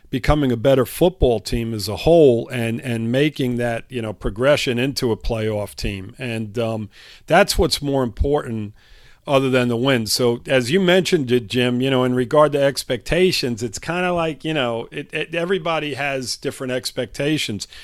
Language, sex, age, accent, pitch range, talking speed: English, male, 50-69, American, 120-155 Hz, 180 wpm